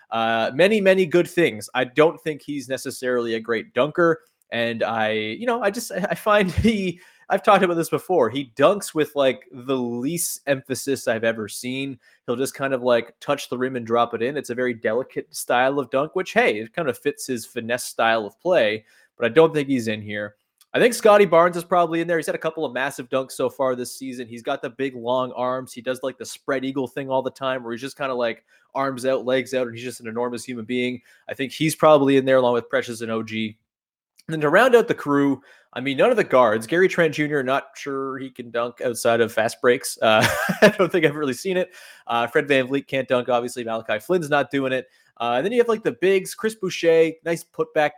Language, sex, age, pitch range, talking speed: English, male, 20-39, 120-155 Hz, 245 wpm